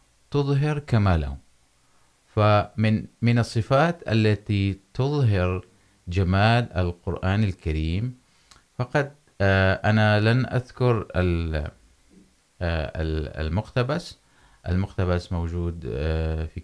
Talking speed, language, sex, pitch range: 70 wpm, Urdu, male, 85-110 Hz